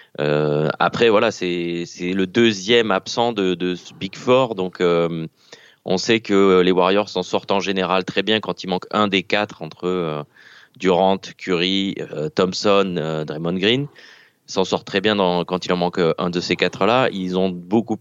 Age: 20-39